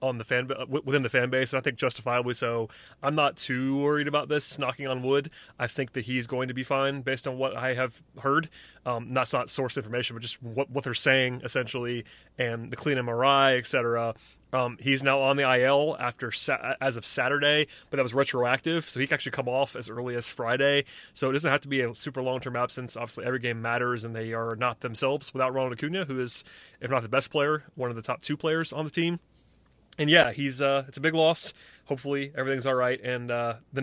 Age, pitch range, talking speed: 30-49, 125-140 Hz, 230 wpm